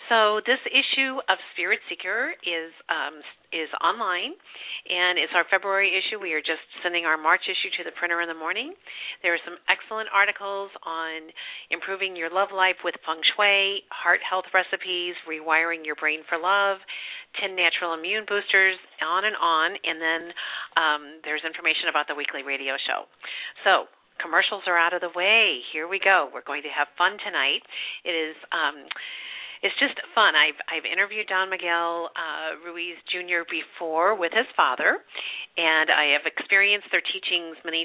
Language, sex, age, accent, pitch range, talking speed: English, female, 50-69, American, 160-195 Hz, 170 wpm